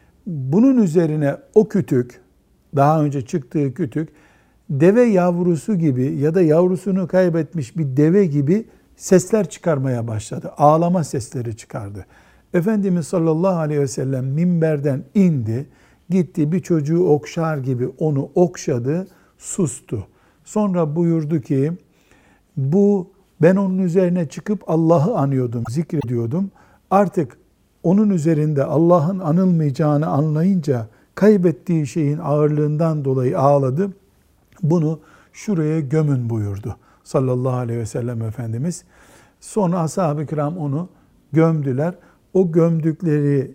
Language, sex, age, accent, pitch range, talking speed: Turkish, male, 60-79, native, 135-175 Hz, 105 wpm